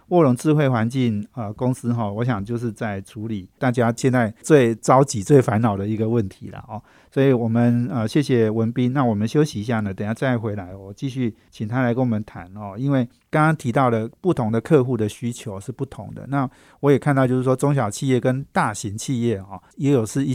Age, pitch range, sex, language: 50-69, 110-135 Hz, male, Chinese